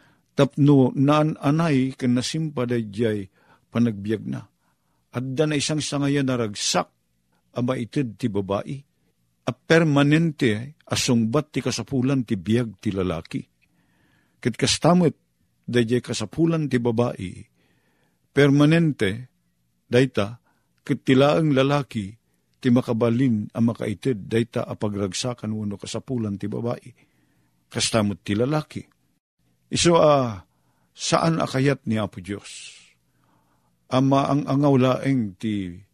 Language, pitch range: Filipino, 100-130 Hz